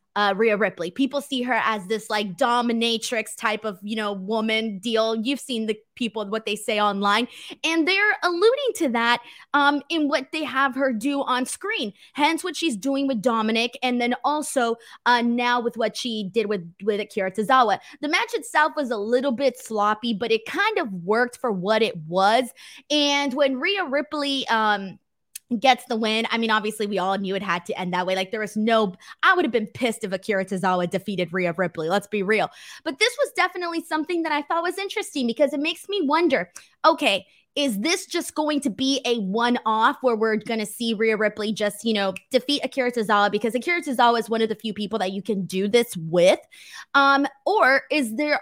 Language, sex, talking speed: English, female, 210 wpm